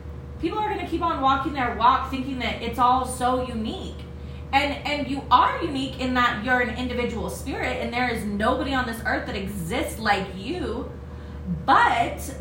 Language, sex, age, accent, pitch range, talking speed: English, female, 30-49, American, 240-295 Hz, 185 wpm